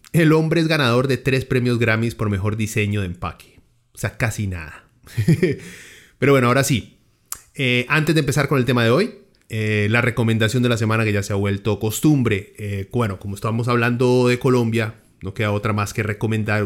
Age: 30-49